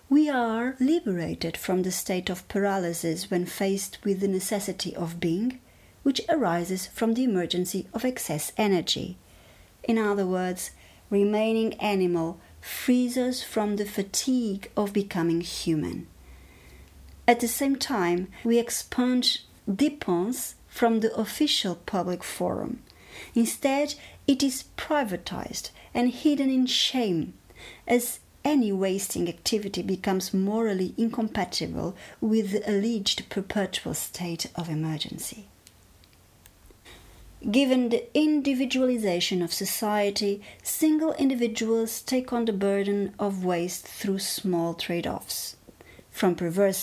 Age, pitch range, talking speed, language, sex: 40-59, 175-235 Hz, 115 wpm, English, female